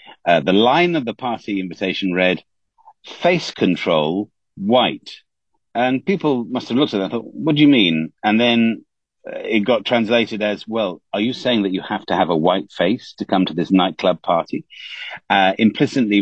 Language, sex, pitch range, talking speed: English, male, 105-145 Hz, 190 wpm